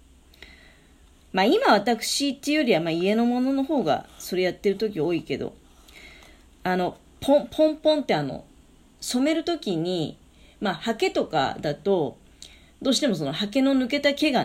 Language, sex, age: Japanese, female, 40-59